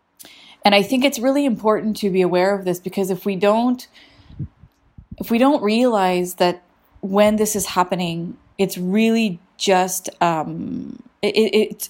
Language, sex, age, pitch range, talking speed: English, female, 20-39, 175-205 Hz, 150 wpm